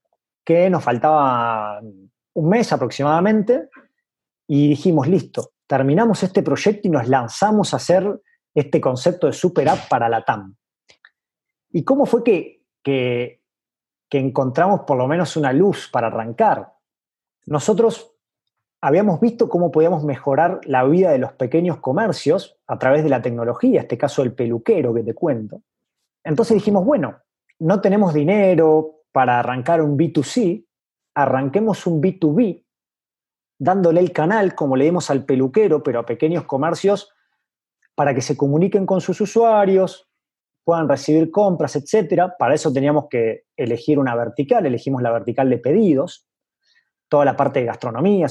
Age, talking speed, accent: 30-49, 145 wpm, Argentinian